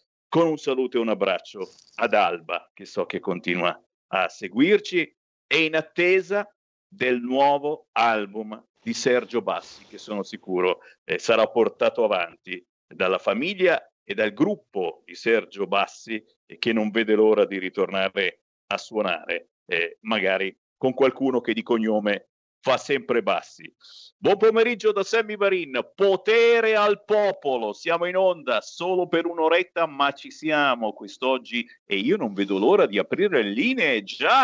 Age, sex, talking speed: 50-69, male, 145 wpm